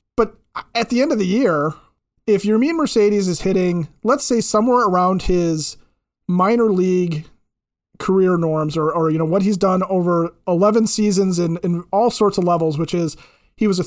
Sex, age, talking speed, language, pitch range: male, 30-49, 185 wpm, English, 160-205 Hz